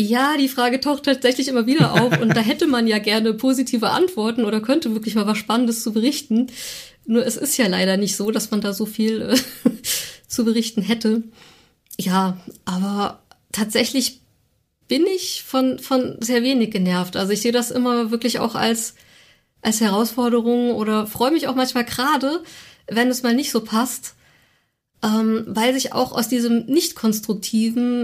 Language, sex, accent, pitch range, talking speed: German, female, German, 215-250 Hz, 170 wpm